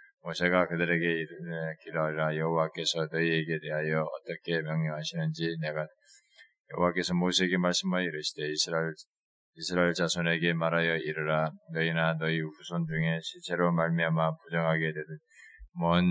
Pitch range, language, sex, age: 80-85 Hz, Korean, male, 20-39